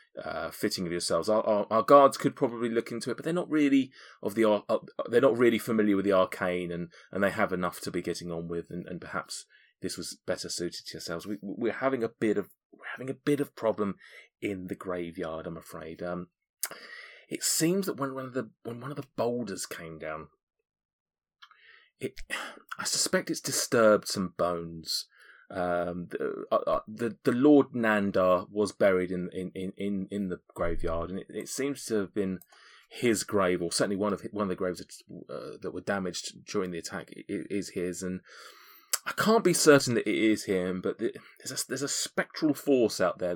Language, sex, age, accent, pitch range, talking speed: English, male, 30-49, British, 90-120 Hz, 205 wpm